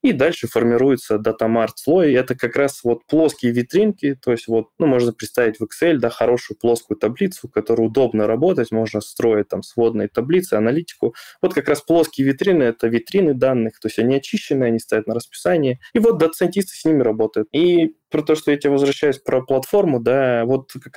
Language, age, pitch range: Russian, 20-39, 115-150 Hz